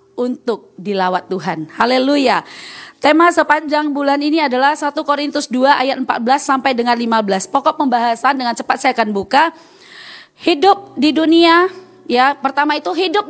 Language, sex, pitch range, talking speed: Indonesian, female, 240-330 Hz, 140 wpm